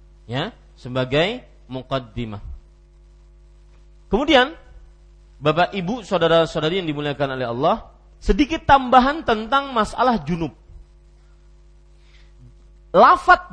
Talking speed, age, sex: 75 wpm, 40-59, male